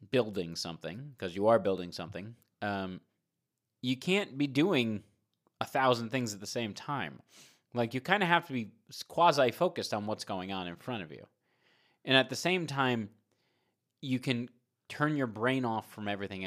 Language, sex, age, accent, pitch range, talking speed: English, male, 30-49, American, 110-140 Hz, 180 wpm